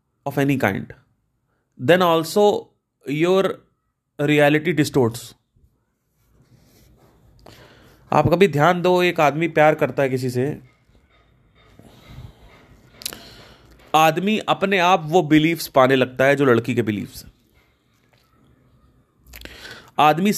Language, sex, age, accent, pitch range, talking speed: Hindi, male, 30-49, native, 125-170 Hz, 95 wpm